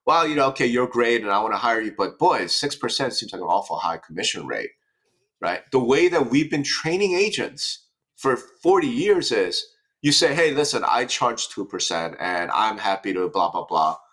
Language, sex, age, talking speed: English, male, 30-49, 205 wpm